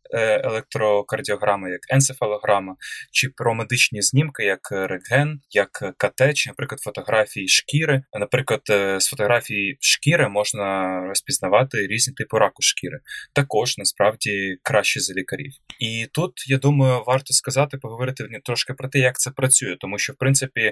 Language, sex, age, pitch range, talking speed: Ukrainian, male, 20-39, 110-140 Hz, 135 wpm